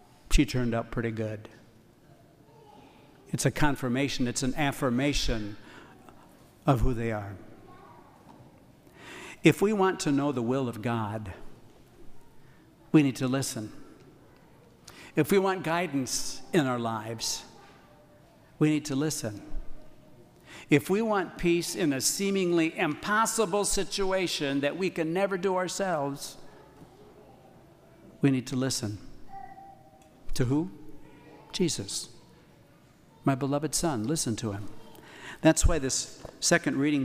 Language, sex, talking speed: English, male, 115 wpm